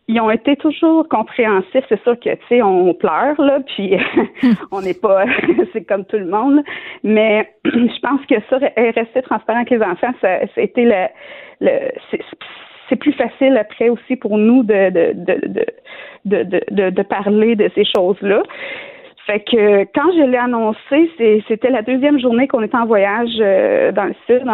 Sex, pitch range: female, 200-255 Hz